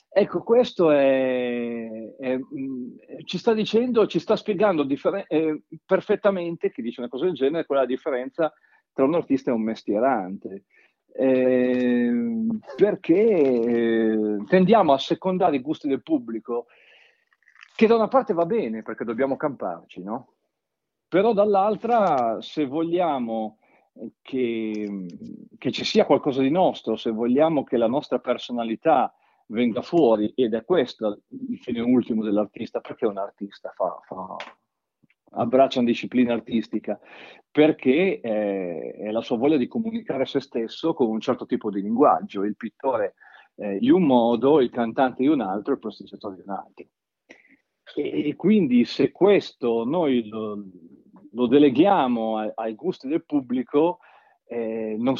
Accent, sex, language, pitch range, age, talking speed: native, male, Italian, 115-185 Hz, 50-69, 140 wpm